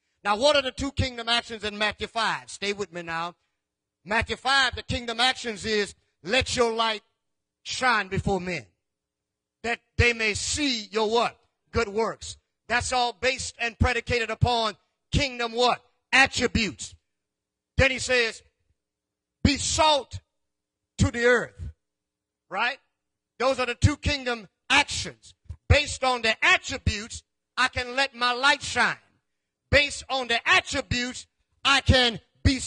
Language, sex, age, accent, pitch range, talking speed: English, male, 40-59, American, 220-270 Hz, 140 wpm